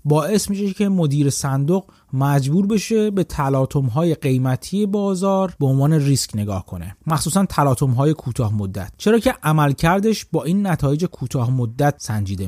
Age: 30-49